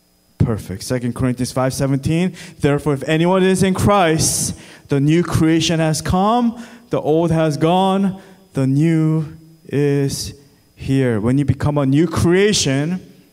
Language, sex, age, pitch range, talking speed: English, male, 20-39, 135-185 Hz, 130 wpm